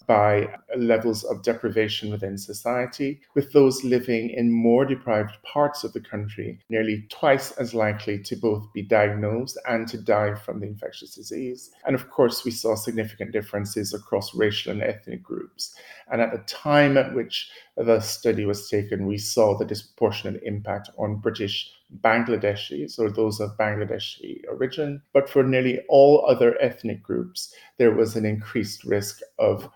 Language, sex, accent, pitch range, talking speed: English, male, British, 105-120 Hz, 160 wpm